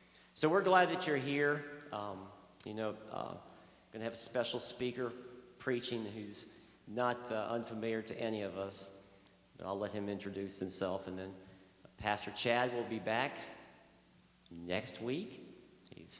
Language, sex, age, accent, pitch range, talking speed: English, male, 50-69, American, 100-135 Hz, 145 wpm